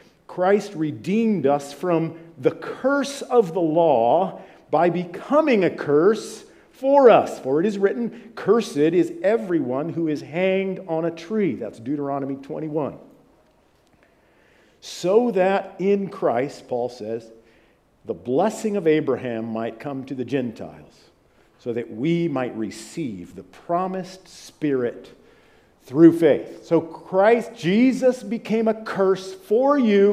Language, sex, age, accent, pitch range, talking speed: English, male, 50-69, American, 125-195 Hz, 130 wpm